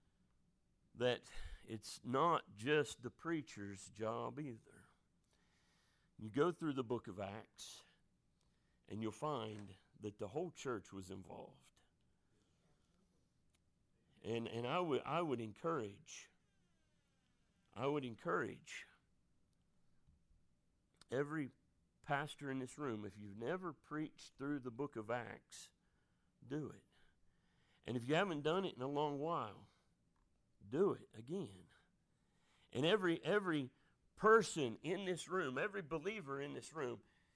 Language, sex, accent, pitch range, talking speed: English, male, American, 110-155 Hz, 120 wpm